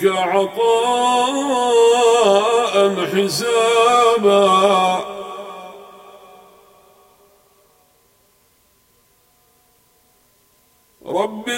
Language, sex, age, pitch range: Arabic, male, 50-69, 190-240 Hz